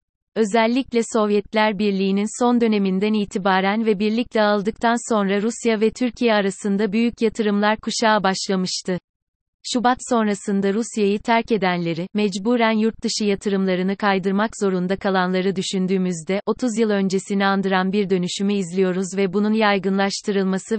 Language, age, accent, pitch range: Turkish, 30-49, native, 190-220 Hz